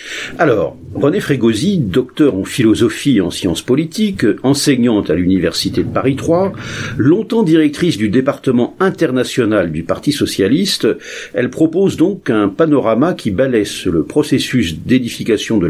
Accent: French